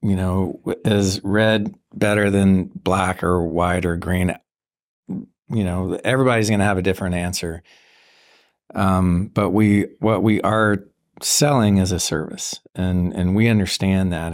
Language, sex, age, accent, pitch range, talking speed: English, male, 50-69, American, 95-105 Hz, 145 wpm